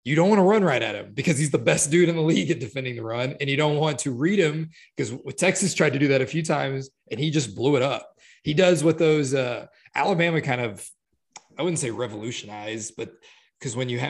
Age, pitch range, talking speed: 20-39, 120-150 Hz, 250 wpm